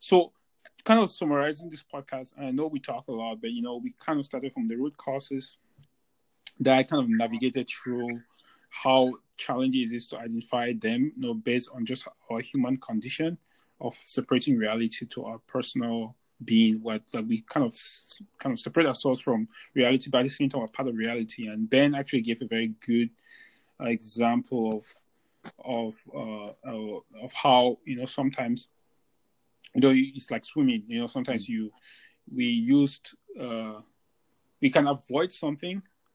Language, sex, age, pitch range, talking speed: English, male, 20-39, 115-165 Hz, 170 wpm